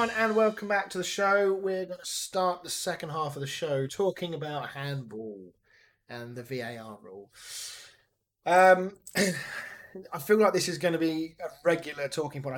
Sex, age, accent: male, 20-39, British